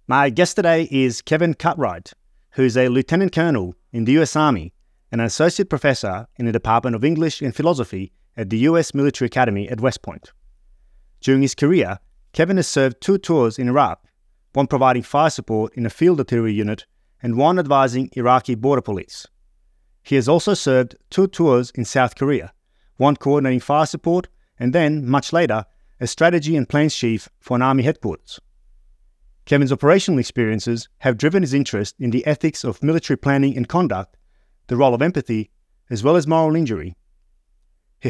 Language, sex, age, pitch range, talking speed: English, male, 30-49, 115-150 Hz, 175 wpm